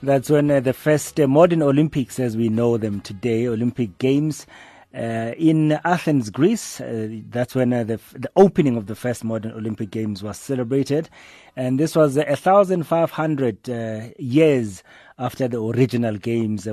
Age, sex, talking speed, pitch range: 30-49, male, 155 wpm, 110-135 Hz